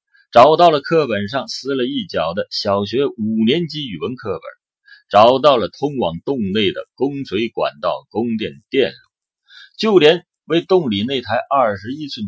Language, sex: Chinese, male